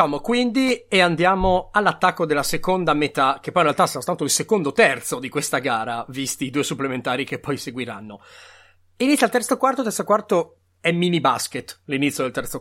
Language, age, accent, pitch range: Italian, 30-49, native, 130-175 Hz